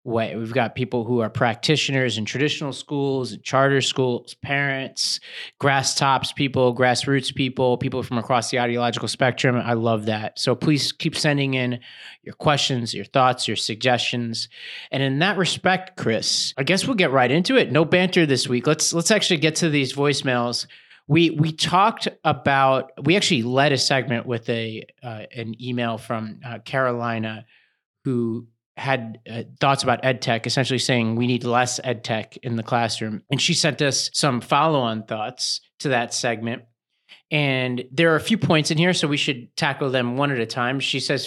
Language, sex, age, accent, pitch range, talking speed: English, male, 30-49, American, 120-140 Hz, 185 wpm